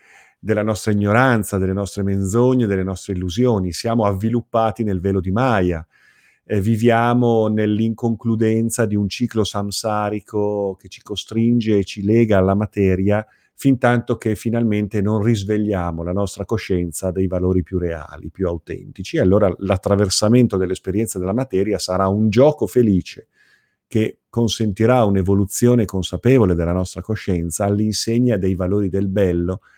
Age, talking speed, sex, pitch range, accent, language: 40-59, 135 wpm, male, 95-115 Hz, native, Italian